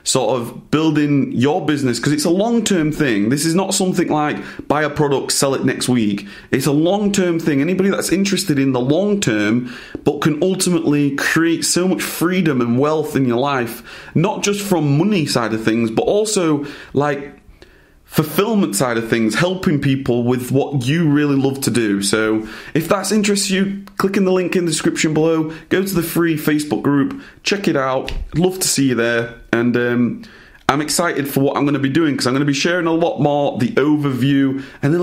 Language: English